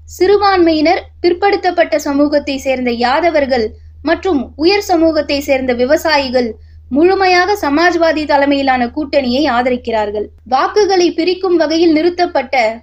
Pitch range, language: 250-340 Hz, Tamil